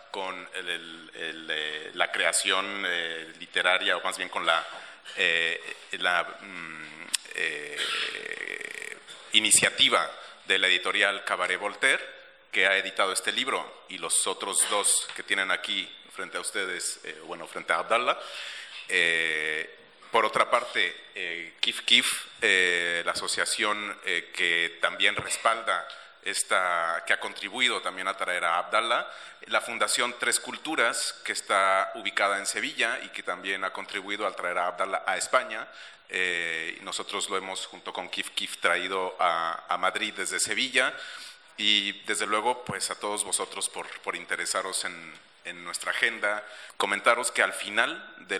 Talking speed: 145 wpm